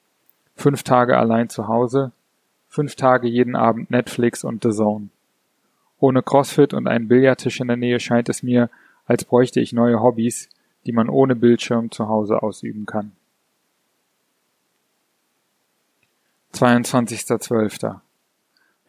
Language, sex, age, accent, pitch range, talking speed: German, male, 30-49, German, 115-130 Hz, 120 wpm